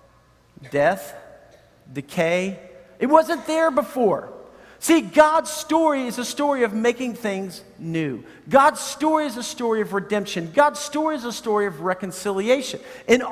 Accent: American